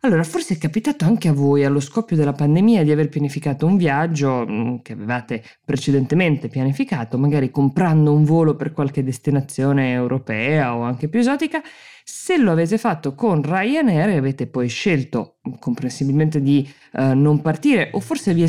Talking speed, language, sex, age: 160 wpm, Italian, female, 20-39